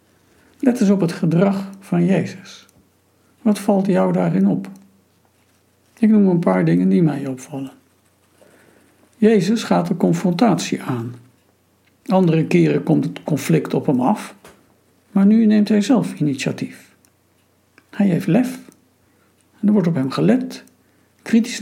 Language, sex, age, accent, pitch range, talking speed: Dutch, male, 60-79, Dutch, 130-200 Hz, 135 wpm